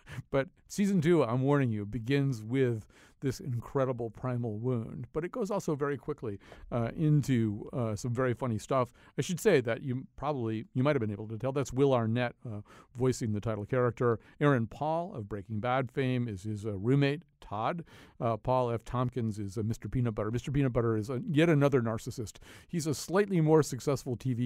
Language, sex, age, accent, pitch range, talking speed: English, male, 50-69, American, 110-145 Hz, 195 wpm